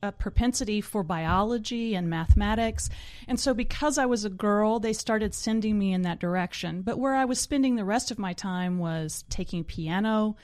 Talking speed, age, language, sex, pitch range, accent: 190 wpm, 30-49, English, female, 180-210 Hz, American